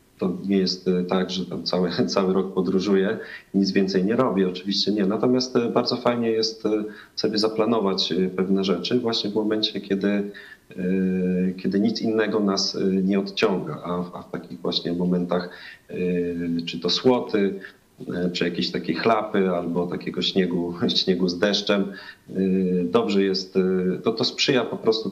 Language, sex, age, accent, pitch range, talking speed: Polish, male, 40-59, native, 90-105 Hz, 140 wpm